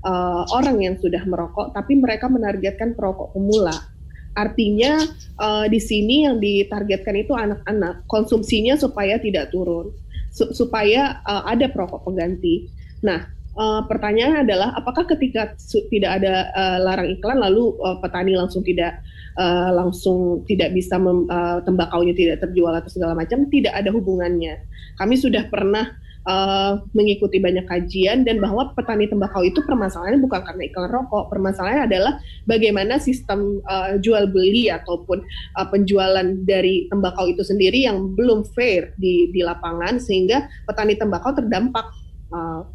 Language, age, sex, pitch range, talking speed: Indonesian, 20-39, female, 180-225 Hz, 145 wpm